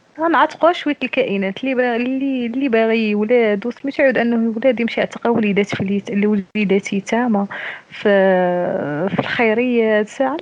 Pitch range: 190-255 Hz